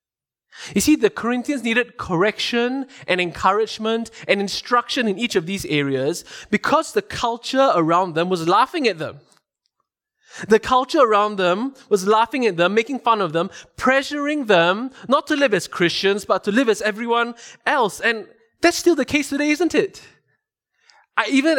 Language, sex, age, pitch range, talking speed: English, male, 20-39, 180-255 Hz, 160 wpm